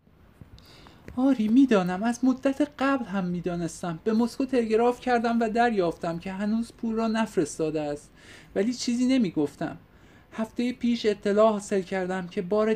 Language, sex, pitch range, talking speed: Persian, male, 170-220 Hz, 140 wpm